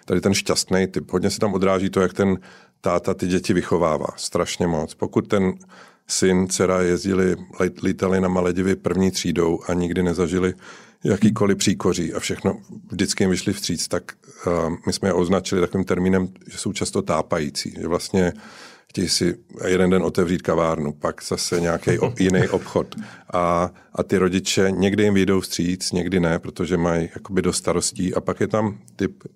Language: Czech